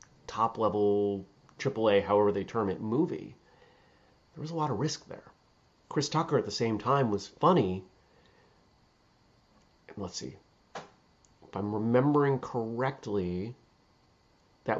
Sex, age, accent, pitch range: male, 30-49, American, 100-130 Hz